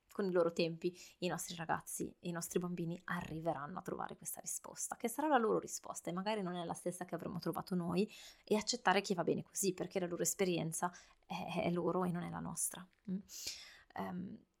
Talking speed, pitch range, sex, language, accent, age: 195 wpm, 170-190 Hz, female, Italian, native, 20-39